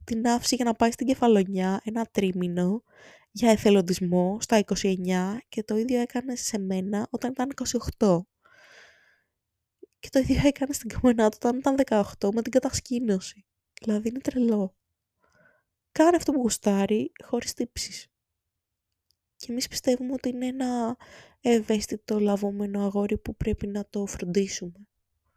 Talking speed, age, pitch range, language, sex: 135 wpm, 20-39, 180-235 Hz, Greek, female